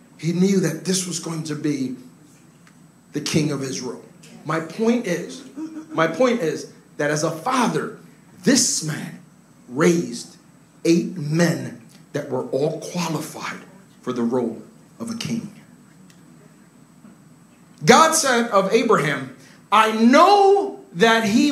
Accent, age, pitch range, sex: American, 40-59, 175-240 Hz, male